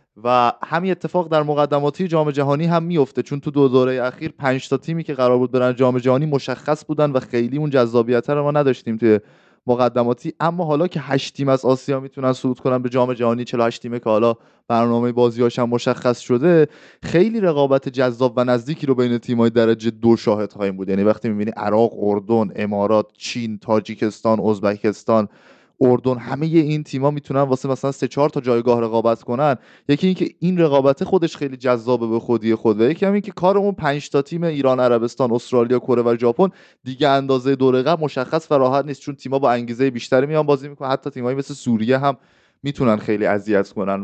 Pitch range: 115-145 Hz